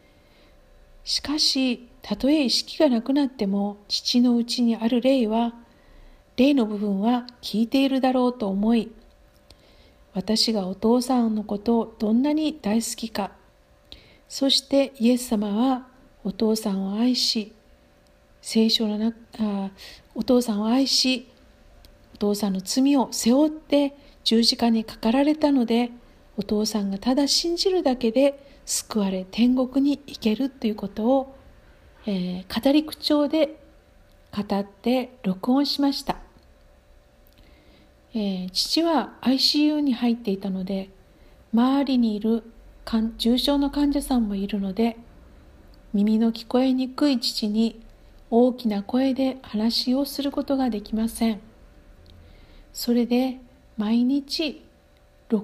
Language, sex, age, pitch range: Japanese, female, 50-69, 210-265 Hz